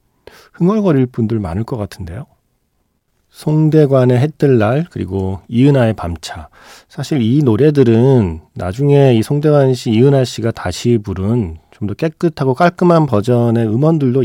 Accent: native